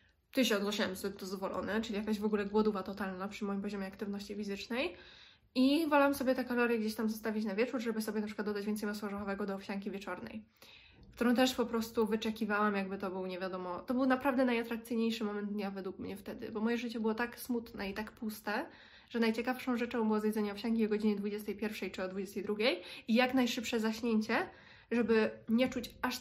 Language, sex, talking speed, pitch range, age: Polish, female, 185 wpm, 205-245 Hz, 20-39